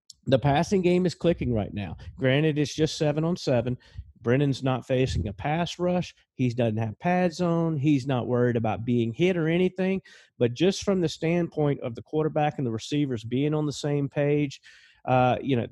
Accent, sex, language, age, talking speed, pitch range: American, male, English, 40-59, 195 wpm, 115-145 Hz